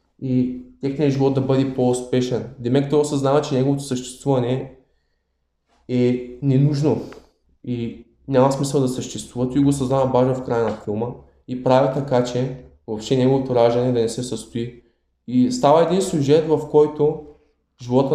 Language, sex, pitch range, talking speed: Bulgarian, male, 125-145 Hz, 145 wpm